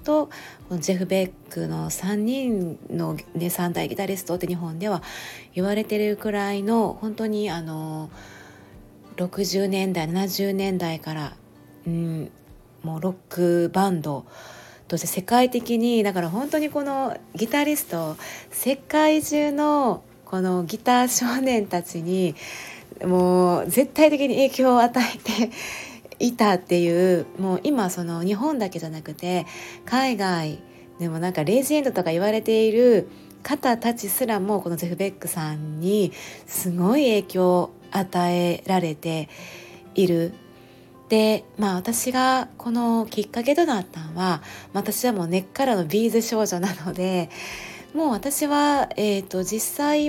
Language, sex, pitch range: Japanese, female, 175-240 Hz